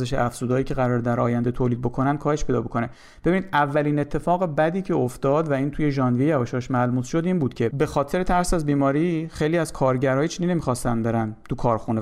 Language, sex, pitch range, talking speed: Persian, male, 125-160 Hz, 195 wpm